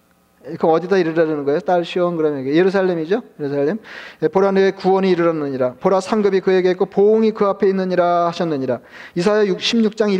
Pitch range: 165-195 Hz